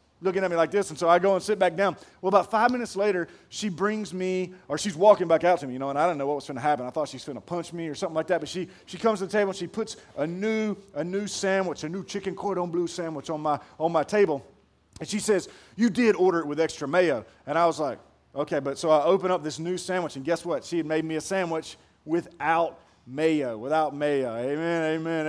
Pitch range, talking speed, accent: 165-220 Hz, 275 wpm, American